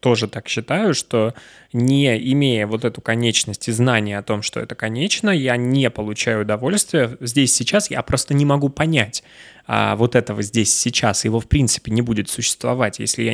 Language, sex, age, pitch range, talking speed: Russian, male, 20-39, 115-140 Hz, 180 wpm